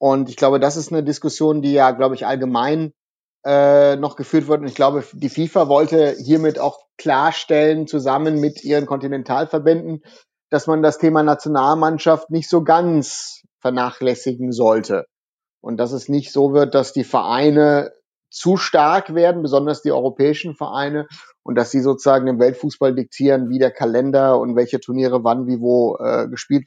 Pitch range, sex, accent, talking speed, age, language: 130-155 Hz, male, German, 165 wpm, 30-49, German